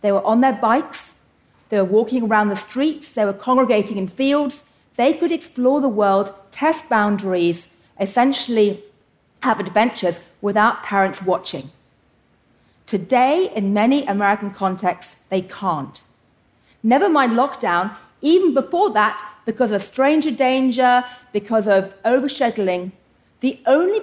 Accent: British